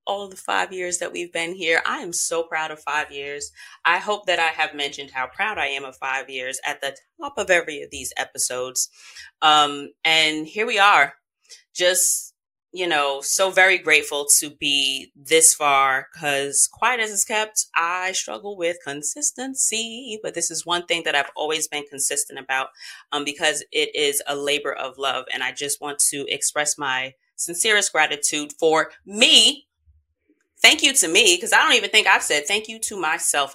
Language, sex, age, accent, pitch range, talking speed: English, female, 30-49, American, 140-195 Hz, 190 wpm